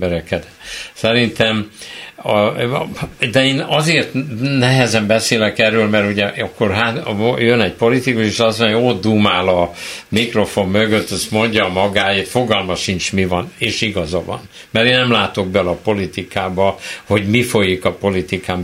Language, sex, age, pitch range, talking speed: Hungarian, male, 60-79, 95-125 Hz, 145 wpm